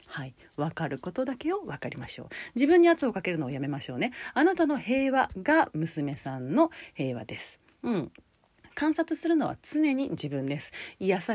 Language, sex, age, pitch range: Japanese, female, 40-59, 145-235 Hz